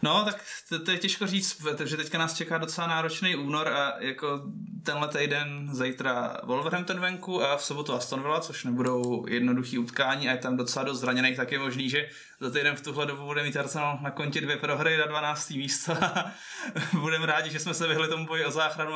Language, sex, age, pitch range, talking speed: Czech, male, 20-39, 125-155 Hz, 205 wpm